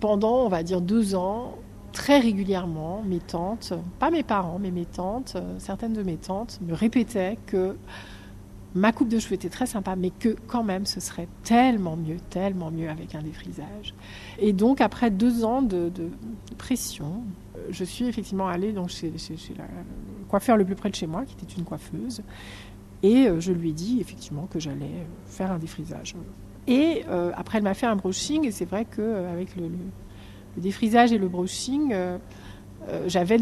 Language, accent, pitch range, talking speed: French, French, 175-230 Hz, 185 wpm